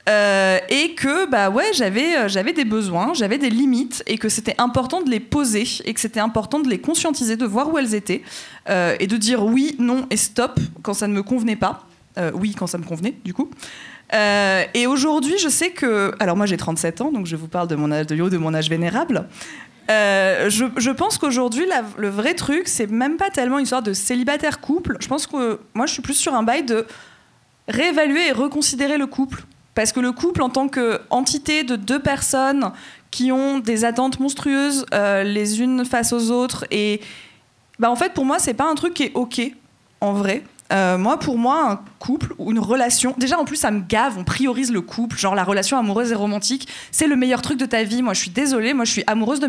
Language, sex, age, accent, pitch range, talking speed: French, female, 20-39, French, 210-270 Hz, 230 wpm